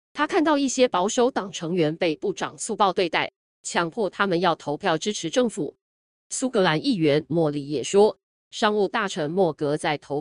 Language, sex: Chinese, female